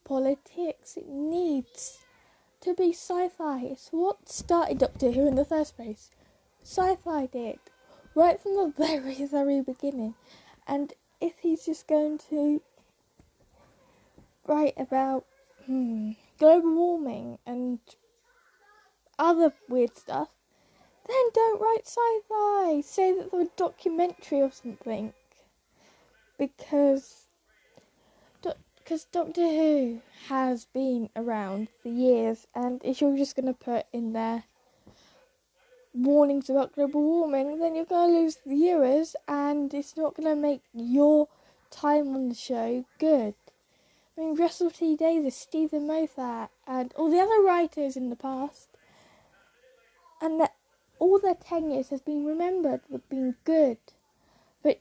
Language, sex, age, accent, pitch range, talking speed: English, female, 10-29, British, 265-340 Hz, 130 wpm